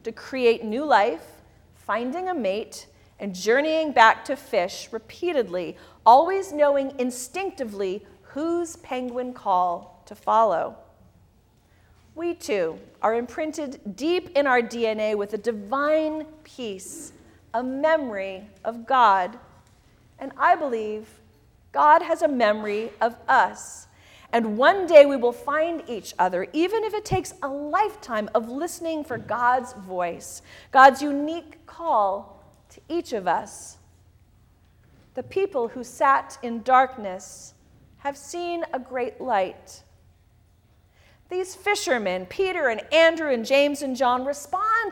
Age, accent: 40-59, American